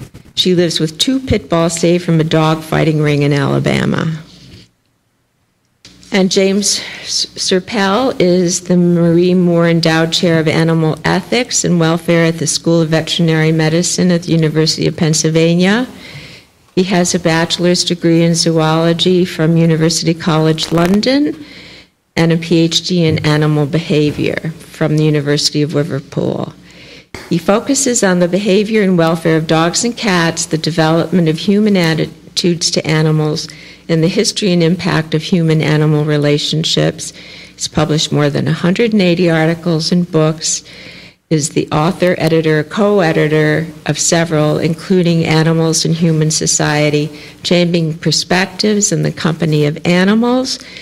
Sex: female